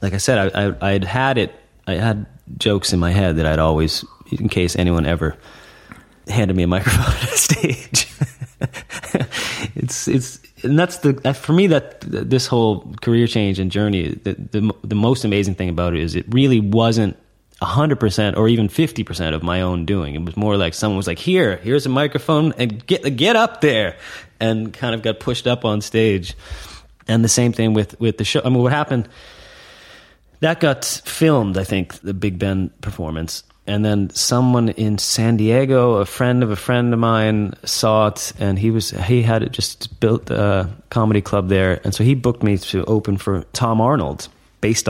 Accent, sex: American, male